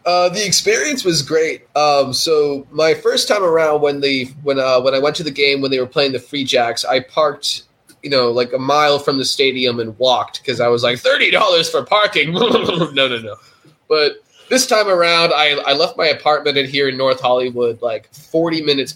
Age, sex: 20-39, male